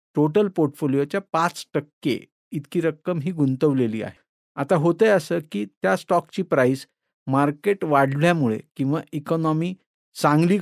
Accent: native